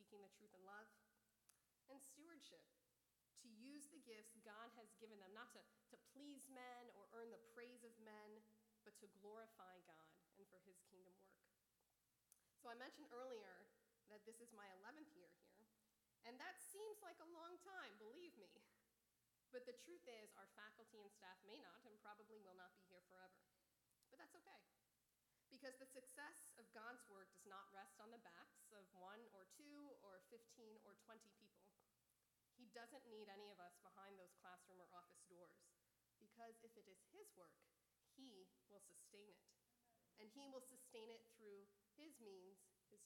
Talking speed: 175 wpm